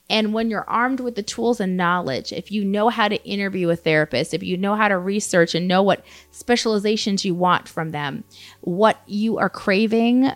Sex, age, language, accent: female, 30-49, English, American